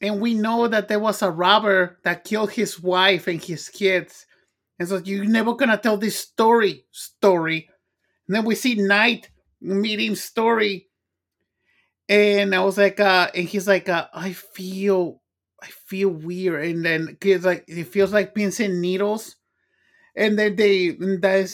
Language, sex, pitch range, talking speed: English, male, 180-215 Hz, 165 wpm